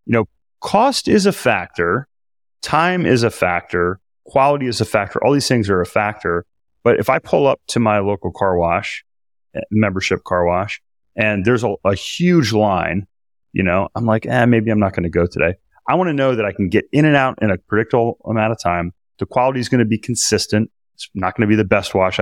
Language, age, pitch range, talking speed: English, 30-49, 95-115 Hz, 225 wpm